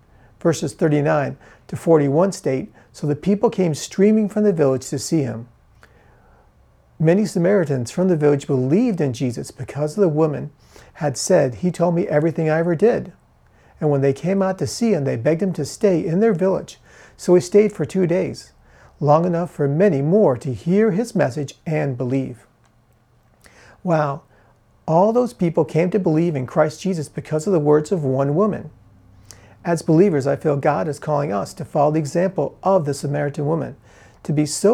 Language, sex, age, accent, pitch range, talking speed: English, male, 40-59, American, 140-185 Hz, 180 wpm